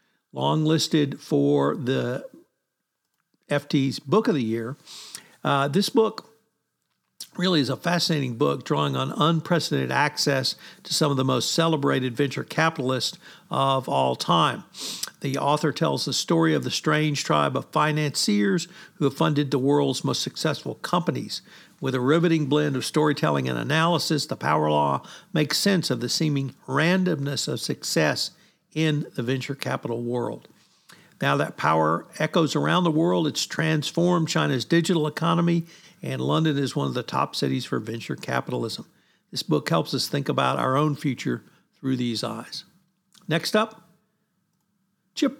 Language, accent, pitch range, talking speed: English, American, 140-170 Hz, 150 wpm